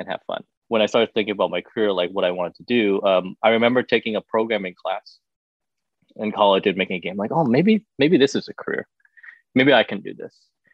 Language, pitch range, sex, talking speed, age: Vietnamese, 100-135 Hz, male, 235 wpm, 20-39